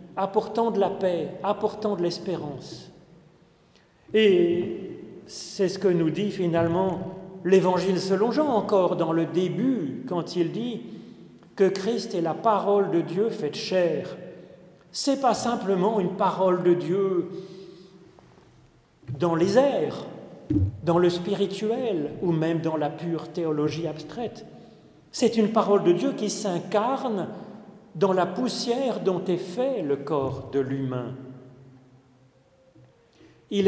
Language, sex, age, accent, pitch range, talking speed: French, male, 40-59, French, 160-205 Hz, 130 wpm